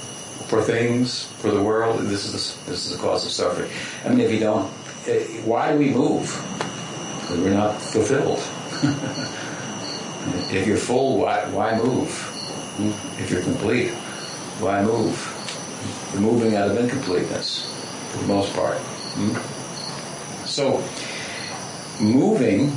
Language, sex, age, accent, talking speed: English, male, 60-79, American, 120 wpm